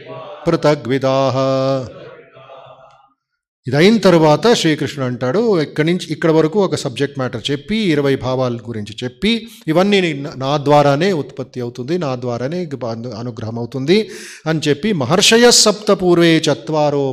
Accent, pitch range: native, 130-180 Hz